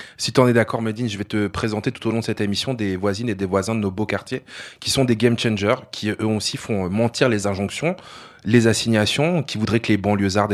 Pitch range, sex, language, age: 110-135 Hz, male, French, 20-39